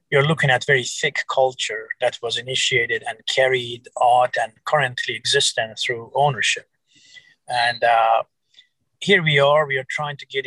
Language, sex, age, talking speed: English, male, 30-49, 155 wpm